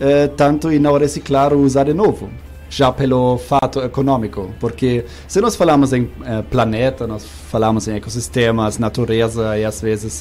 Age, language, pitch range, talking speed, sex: 20-39, Portuguese, 110-130 Hz, 160 wpm, male